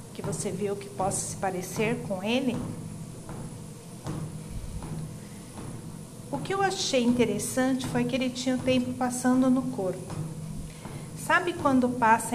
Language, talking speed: Portuguese, 125 wpm